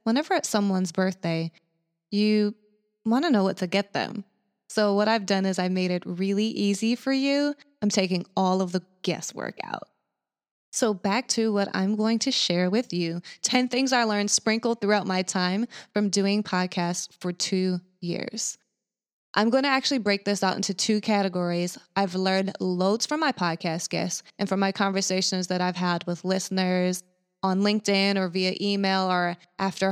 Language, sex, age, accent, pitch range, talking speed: English, female, 20-39, American, 180-220 Hz, 175 wpm